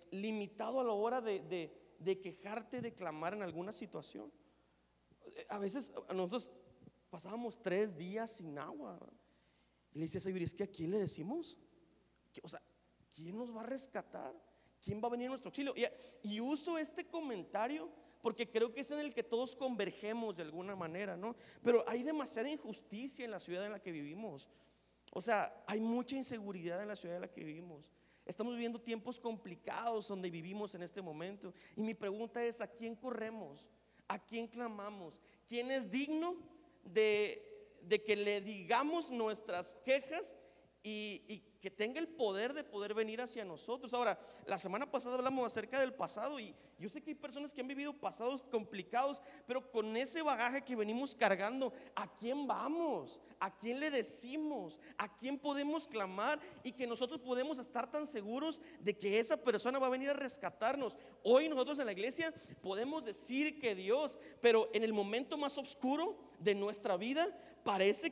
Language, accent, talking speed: Spanish, Mexican, 175 wpm